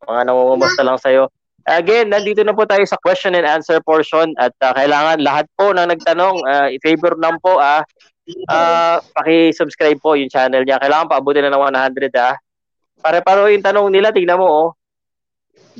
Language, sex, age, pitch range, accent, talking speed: Filipino, male, 20-39, 130-180 Hz, native, 175 wpm